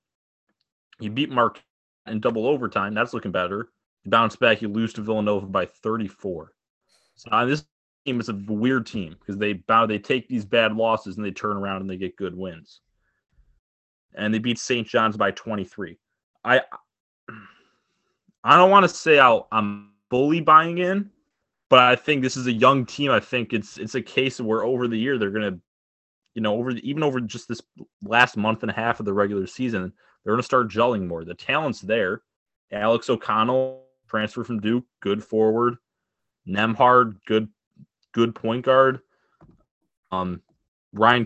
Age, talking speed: 20-39, 180 wpm